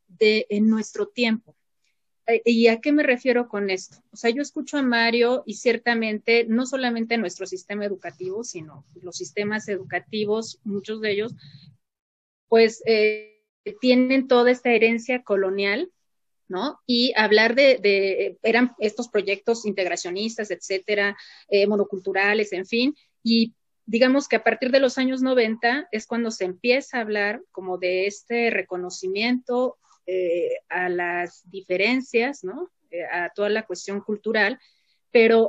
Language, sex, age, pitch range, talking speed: Spanish, female, 30-49, 200-245 Hz, 140 wpm